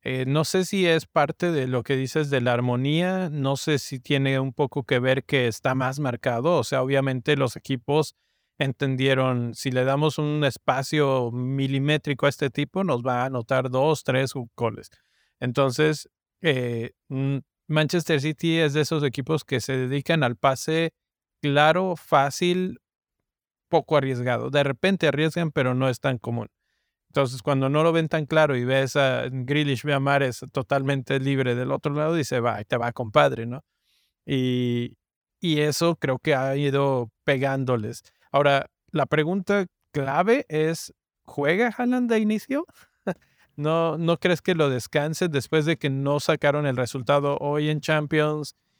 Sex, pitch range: male, 130-155 Hz